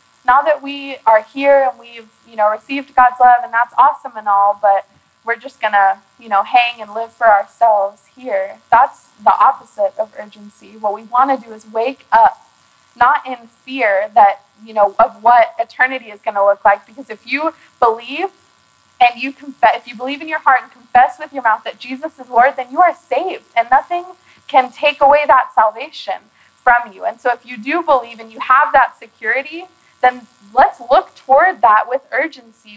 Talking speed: 200 wpm